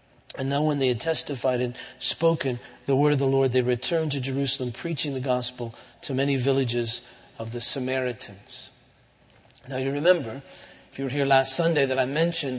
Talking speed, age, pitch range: 180 wpm, 40-59, 125-150 Hz